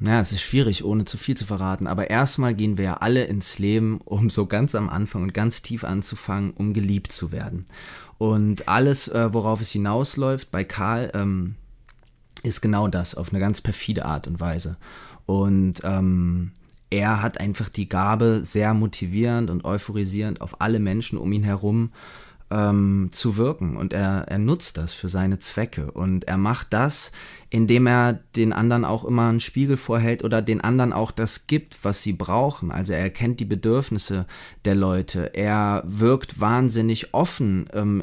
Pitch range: 95-115 Hz